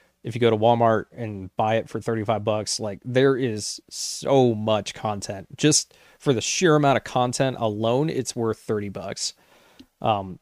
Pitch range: 105-125 Hz